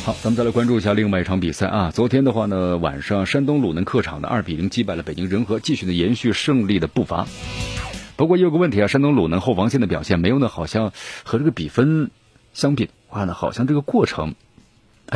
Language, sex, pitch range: Chinese, male, 95-130 Hz